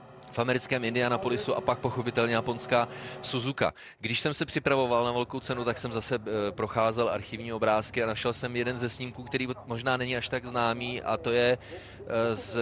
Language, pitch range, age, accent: Czech, 115-135 Hz, 30-49, native